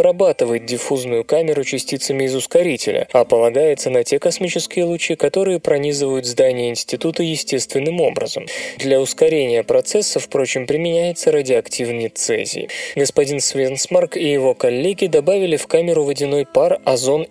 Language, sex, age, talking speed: Russian, male, 20-39, 120 wpm